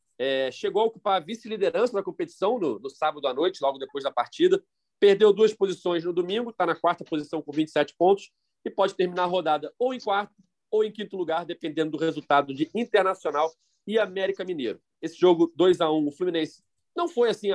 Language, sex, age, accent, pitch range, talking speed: Portuguese, male, 40-59, Brazilian, 155-205 Hz, 200 wpm